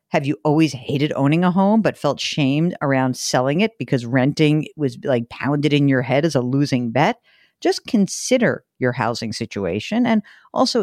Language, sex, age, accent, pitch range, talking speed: English, female, 50-69, American, 140-210 Hz, 175 wpm